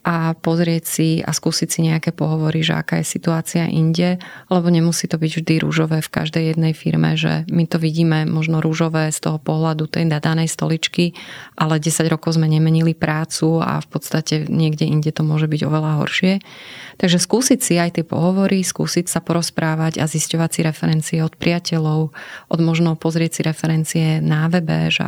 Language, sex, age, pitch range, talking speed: Slovak, female, 30-49, 160-175 Hz, 175 wpm